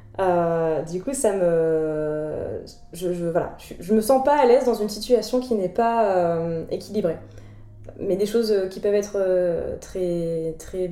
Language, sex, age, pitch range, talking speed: French, female, 20-39, 170-225 Hz, 185 wpm